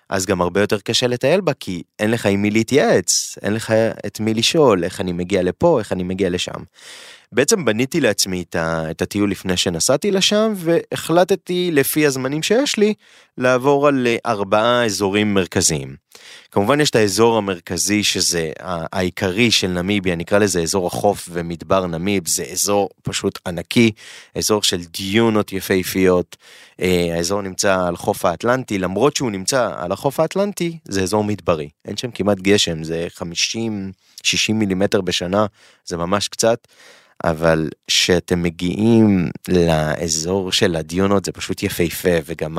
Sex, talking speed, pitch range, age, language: male, 145 wpm, 90-125 Hz, 20-39, Hebrew